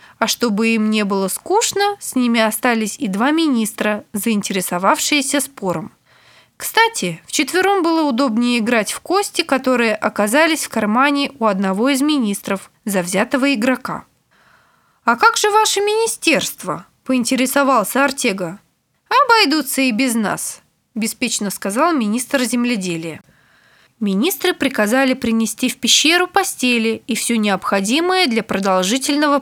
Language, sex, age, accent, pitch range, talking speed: Russian, female, 20-39, native, 210-290 Hz, 120 wpm